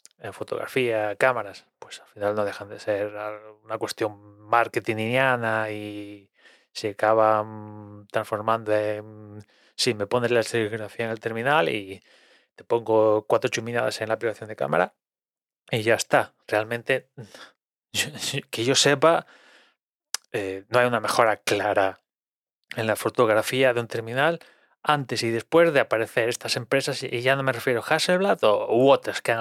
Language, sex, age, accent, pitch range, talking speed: Spanish, male, 20-39, Spanish, 105-130 Hz, 150 wpm